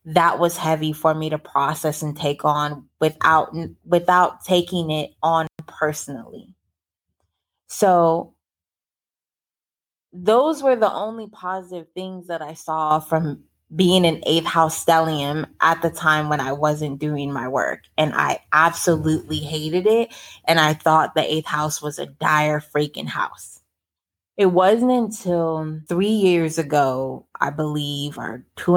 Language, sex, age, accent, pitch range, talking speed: English, female, 20-39, American, 150-175 Hz, 140 wpm